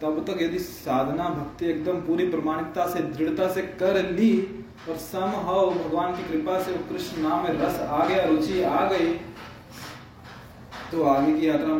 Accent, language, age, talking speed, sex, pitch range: native, Hindi, 20-39, 170 wpm, male, 135-180 Hz